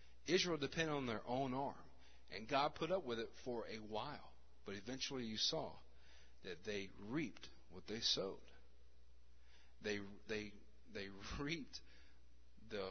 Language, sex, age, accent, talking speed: English, male, 40-59, American, 140 wpm